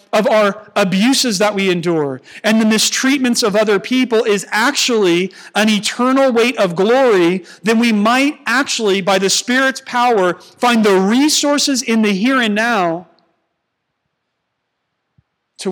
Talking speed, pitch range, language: 135 wpm, 155-215 Hz, English